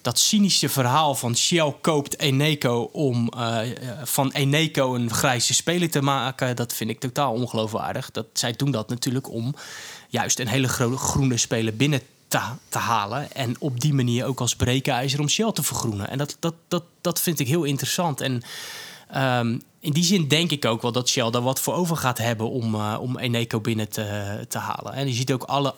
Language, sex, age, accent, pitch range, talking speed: Dutch, male, 20-39, Dutch, 120-145 Hz, 190 wpm